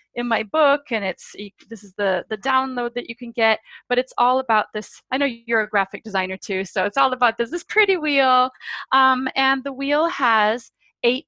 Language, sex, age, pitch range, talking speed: English, female, 30-49, 205-265 Hz, 215 wpm